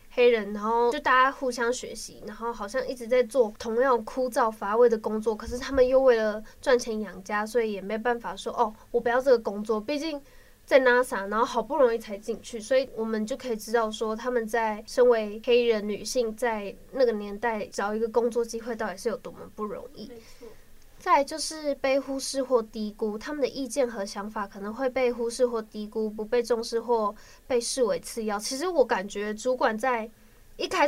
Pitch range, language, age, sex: 220-260 Hz, Chinese, 10-29, female